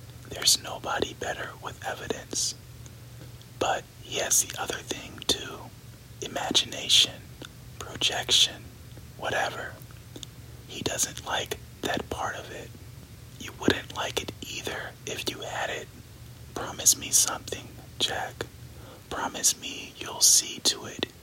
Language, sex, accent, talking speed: English, male, American, 115 wpm